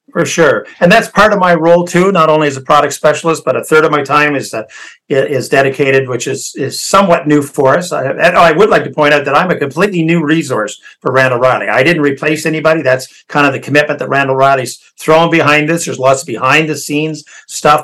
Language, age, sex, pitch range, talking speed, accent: English, 50-69, male, 135-165 Hz, 240 wpm, American